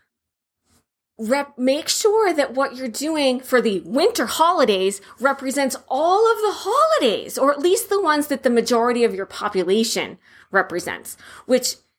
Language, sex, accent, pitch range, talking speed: English, female, American, 205-275 Hz, 145 wpm